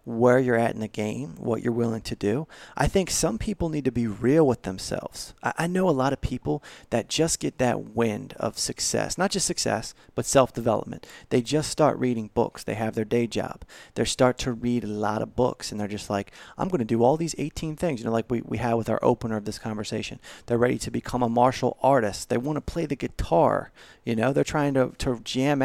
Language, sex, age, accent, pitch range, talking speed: English, male, 30-49, American, 115-155 Hz, 240 wpm